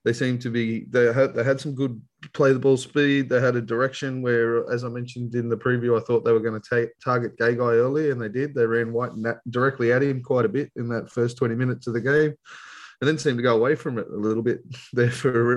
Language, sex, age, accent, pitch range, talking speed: English, male, 20-39, Australian, 115-130 Hz, 275 wpm